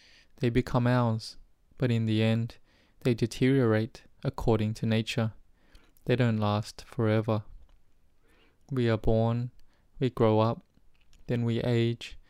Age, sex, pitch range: 20-39, male, 110-125 Hz